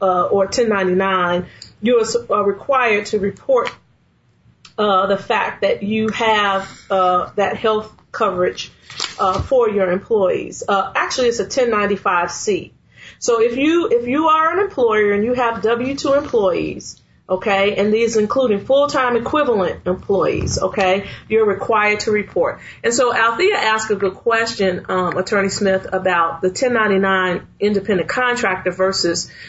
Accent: American